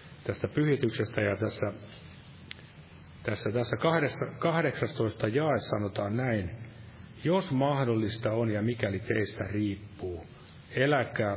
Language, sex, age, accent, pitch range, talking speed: Finnish, male, 40-59, native, 105-130 Hz, 100 wpm